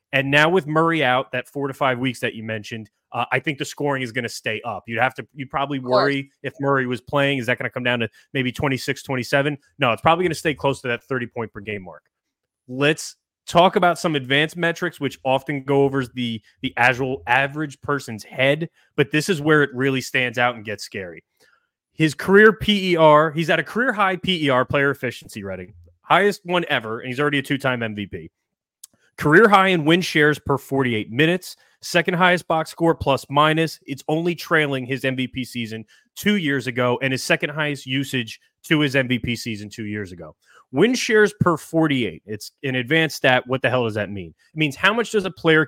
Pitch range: 125-160 Hz